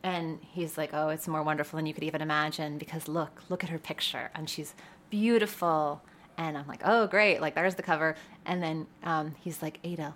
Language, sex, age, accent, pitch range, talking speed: English, female, 30-49, American, 160-210 Hz, 215 wpm